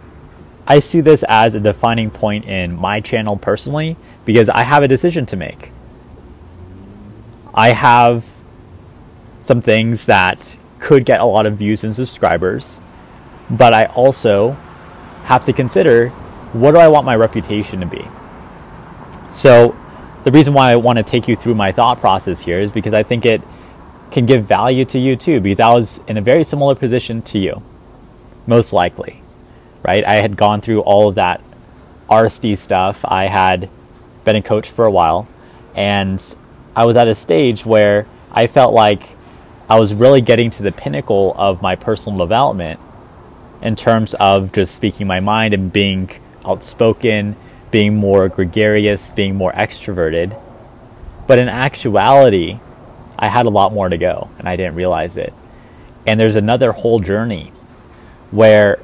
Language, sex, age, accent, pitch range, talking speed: English, male, 30-49, American, 100-120 Hz, 160 wpm